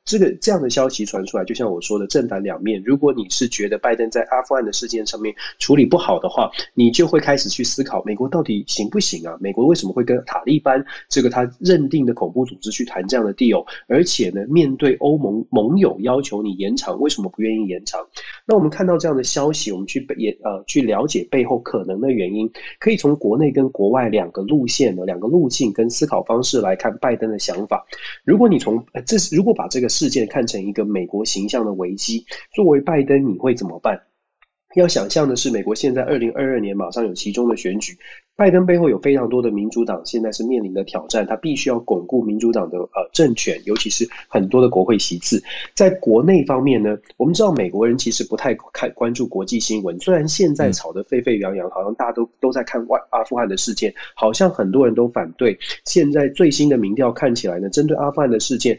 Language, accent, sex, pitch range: Chinese, native, male, 110-140 Hz